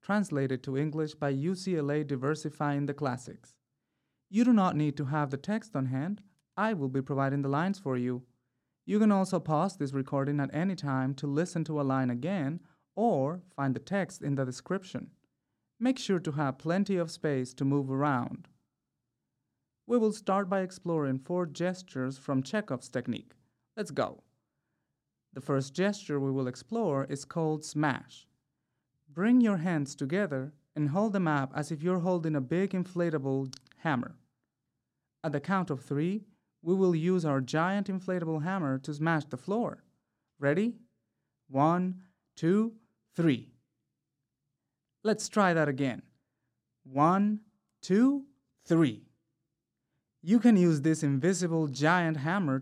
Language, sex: English, male